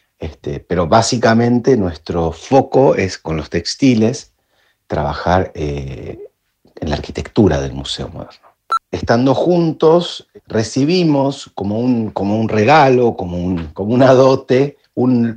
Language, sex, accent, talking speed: Spanish, male, Argentinian, 120 wpm